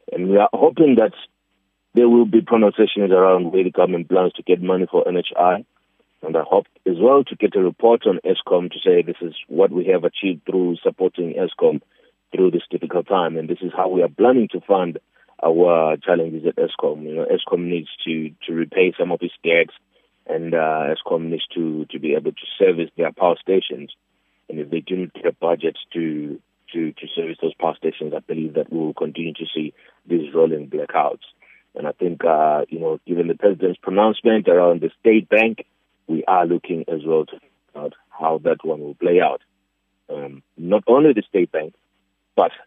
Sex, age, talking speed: male, 30-49, 200 wpm